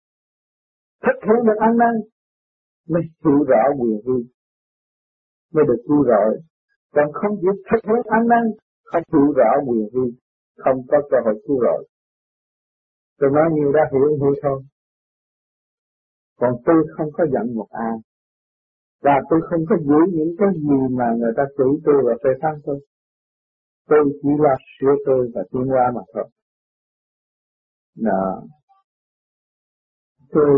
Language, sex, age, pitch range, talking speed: Vietnamese, male, 50-69, 140-210 Hz, 145 wpm